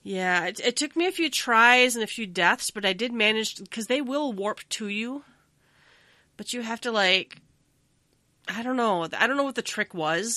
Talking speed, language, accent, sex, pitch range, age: 215 wpm, English, American, female, 175-240 Hz, 30-49